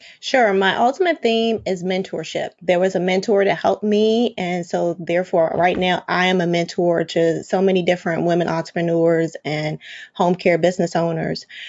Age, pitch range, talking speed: 20-39, 180-215 Hz, 170 wpm